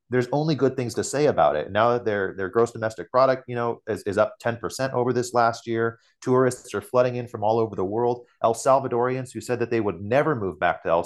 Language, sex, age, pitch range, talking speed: English, male, 30-49, 100-125 Hz, 250 wpm